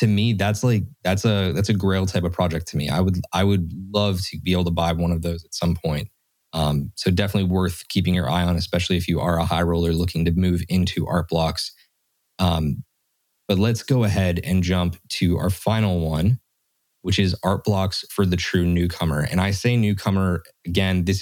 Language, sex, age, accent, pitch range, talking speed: English, male, 20-39, American, 90-100 Hz, 210 wpm